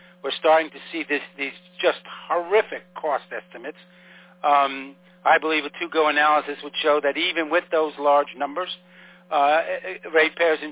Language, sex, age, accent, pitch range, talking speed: English, male, 60-79, American, 150-180 Hz, 145 wpm